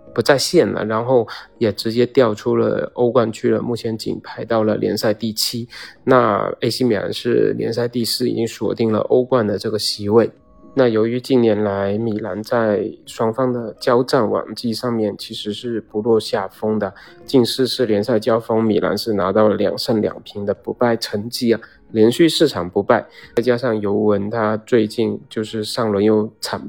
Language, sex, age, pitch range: Chinese, male, 20-39, 105-115 Hz